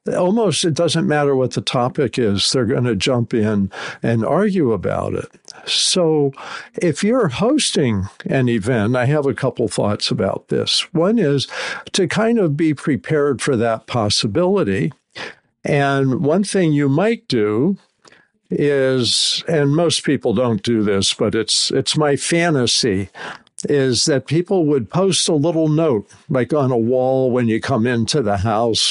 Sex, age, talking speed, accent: male, 60-79, 160 wpm, American